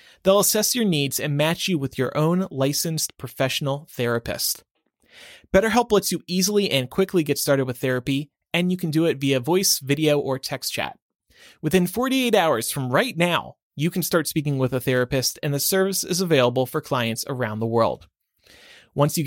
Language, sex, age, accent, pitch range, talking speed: English, male, 30-49, American, 135-175 Hz, 185 wpm